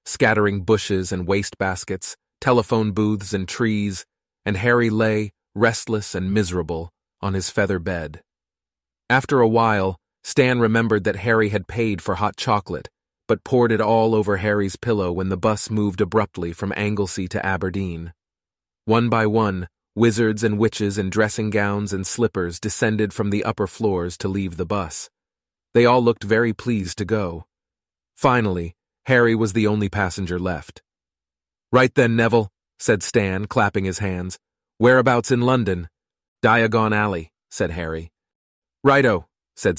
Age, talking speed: 30-49, 145 wpm